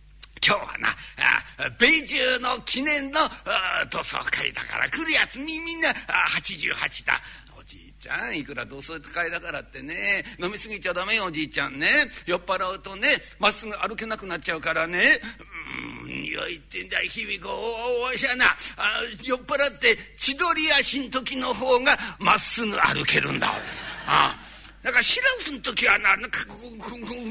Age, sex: 50-69, male